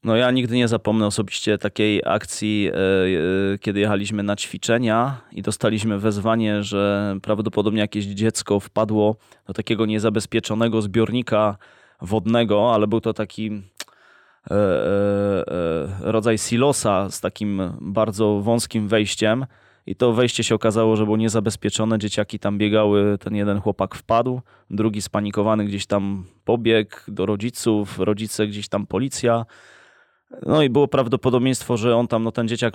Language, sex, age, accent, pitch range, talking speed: Polish, male, 20-39, native, 105-115 Hz, 130 wpm